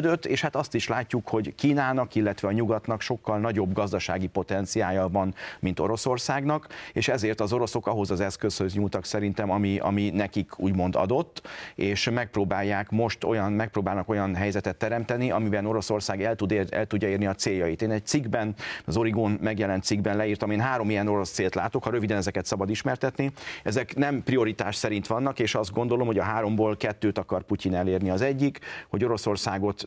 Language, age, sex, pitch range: Hungarian, 40-59, male, 100-115 Hz